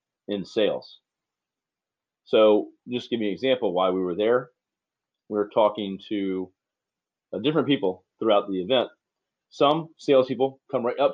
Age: 30-49